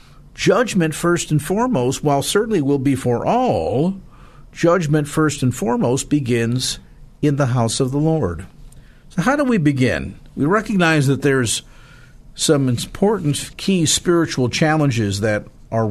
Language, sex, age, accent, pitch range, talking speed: English, male, 50-69, American, 105-140 Hz, 140 wpm